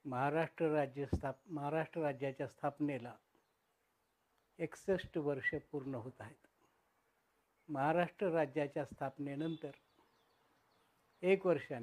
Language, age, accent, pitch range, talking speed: Marathi, 60-79, native, 135-165 Hz, 85 wpm